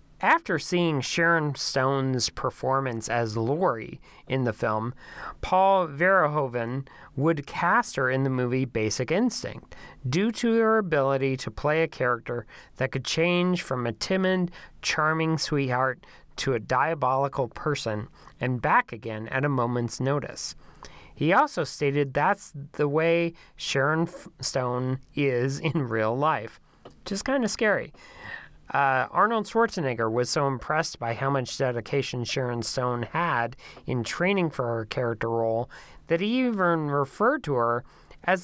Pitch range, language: 125-170 Hz, English